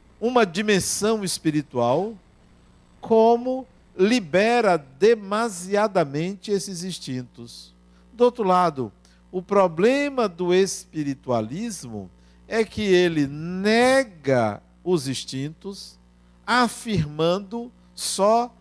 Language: Portuguese